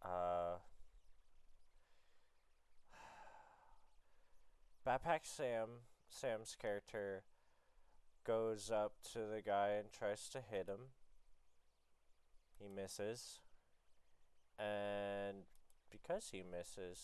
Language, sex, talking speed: English, male, 75 wpm